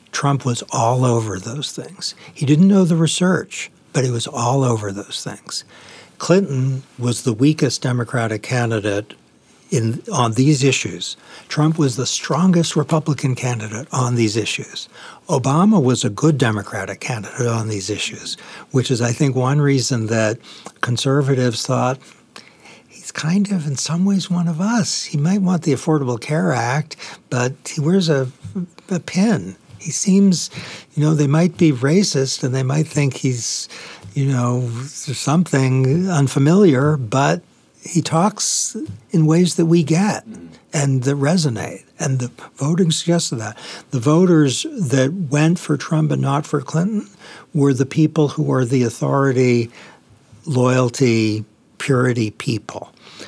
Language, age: English, 60-79